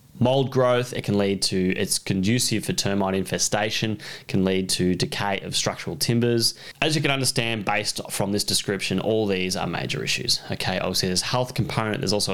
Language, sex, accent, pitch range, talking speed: English, male, Australian, 95-125 Hz, 185 wpm